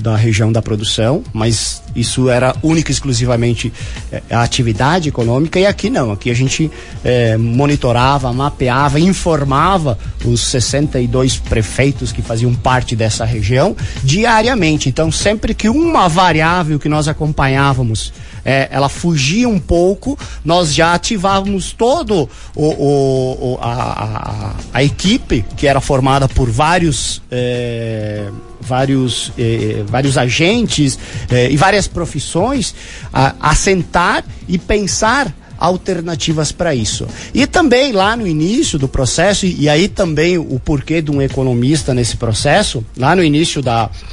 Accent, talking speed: Brazilian, 135 wpm